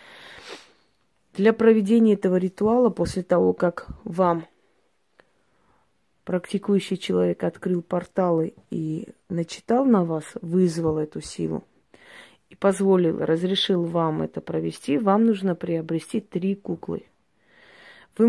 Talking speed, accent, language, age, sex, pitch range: 100 wpm, native, Russian, 20-39, female, 170-210 Hz